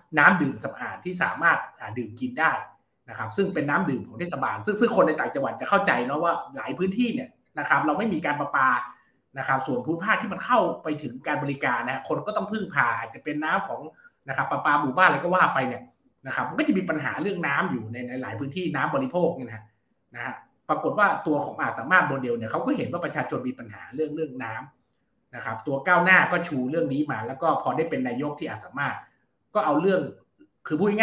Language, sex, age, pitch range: Thai, male, 30-49, 135-185 Hz